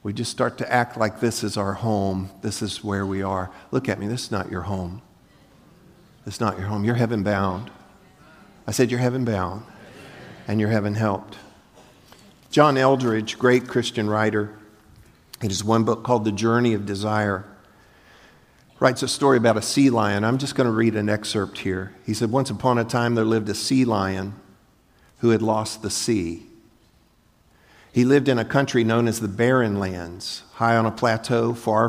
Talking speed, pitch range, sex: 190 wpm, 105-120 Hz, male